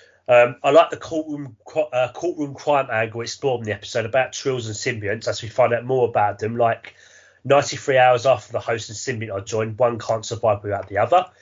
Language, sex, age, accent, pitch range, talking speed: English, male, 30-49, British, 105-140 Hz, 210 wpm